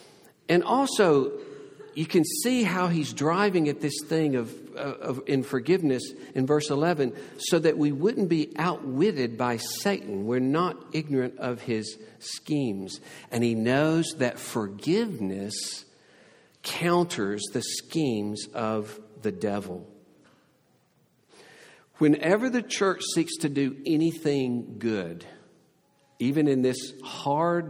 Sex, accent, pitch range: male, American, 115-165 Hz